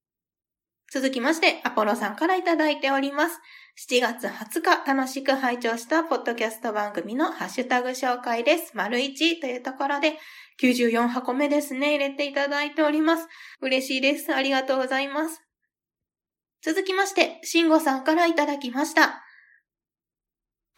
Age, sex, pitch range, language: 20-39, female, 245-305 Hz, Japanese